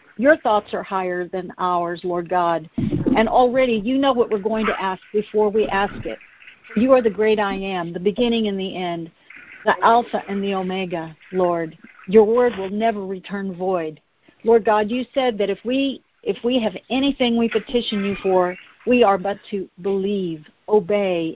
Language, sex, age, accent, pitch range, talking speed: English, female, 50-69, American, 185-230 Hz, 185 wpm